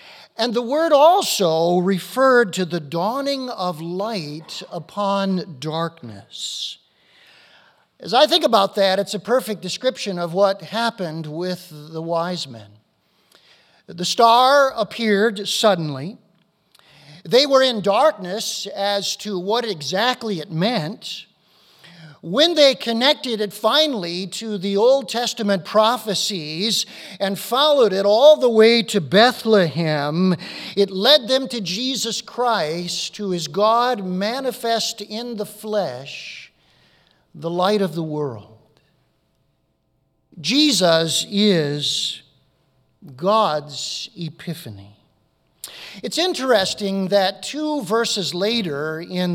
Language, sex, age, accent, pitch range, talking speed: English, male, 50-69, American, 165-225 Hz, 110 wpm